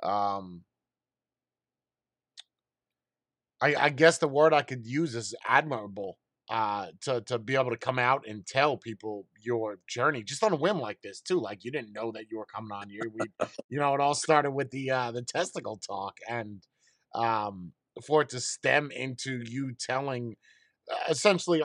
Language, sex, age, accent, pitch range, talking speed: English, male, 30-49, American, 115-150 Hz, 175 wpm